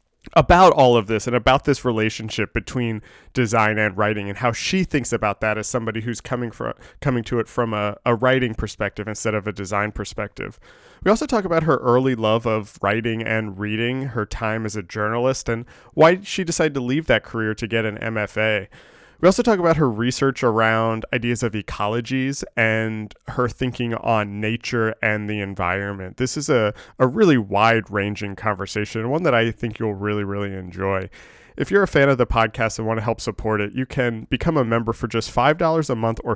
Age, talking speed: 20-39, 200 wpm